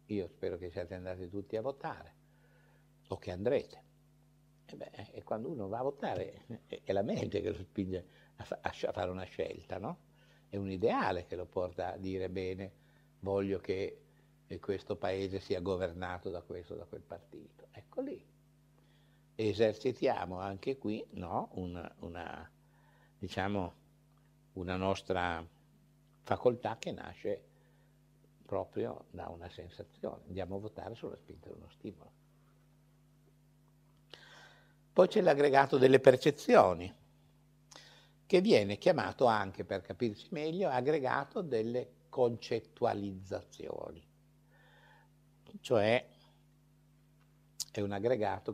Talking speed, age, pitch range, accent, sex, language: 120 wpm, 60-79, 95-145 Hz, native, male, Italian